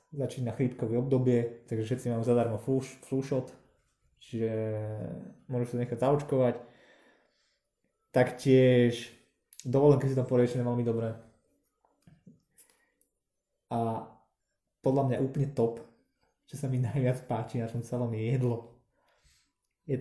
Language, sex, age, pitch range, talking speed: Slovak, male, 20-39, 115-130 Hz, 115 wpm